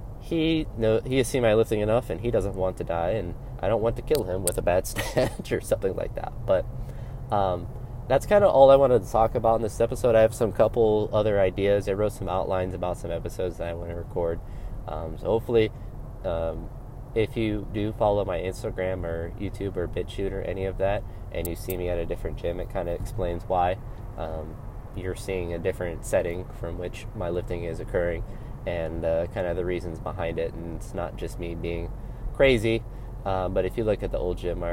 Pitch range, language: 85-115 Hz, English